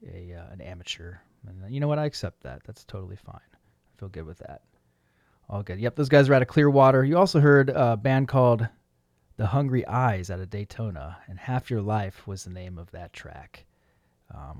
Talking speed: 215 wpm